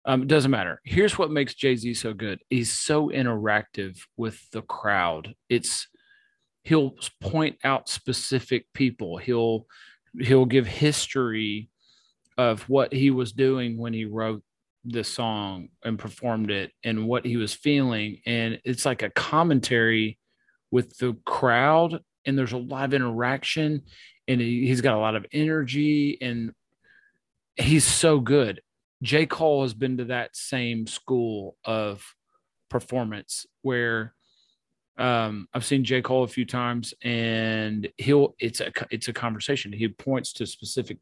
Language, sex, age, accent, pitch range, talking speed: English, male, 30-49, American, 115-135 Hz, 150 wpm